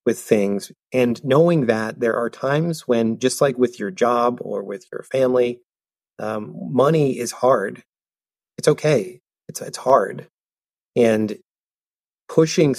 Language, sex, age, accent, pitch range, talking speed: English, male, 30-49, American, 105-130 Hz, 135 wpm